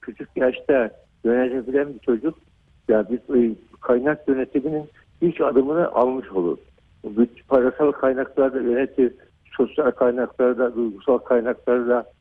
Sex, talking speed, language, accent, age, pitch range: male, 105 wpm, Turkish, native, 60-79, 110-135 Hz